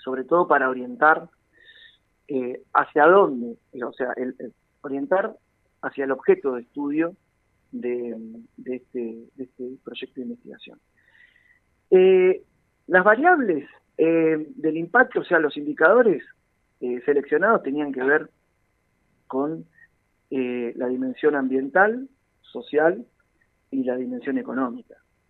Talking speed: 110 wpm